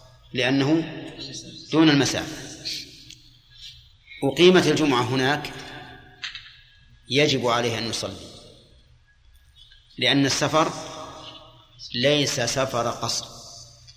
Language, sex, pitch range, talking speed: Arabic, male, 120-145 Hz, 65 wpm